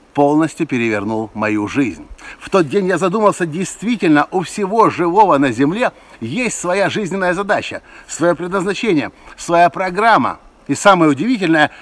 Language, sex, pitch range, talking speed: Russian, male, 180-230 Hz, 130 wpm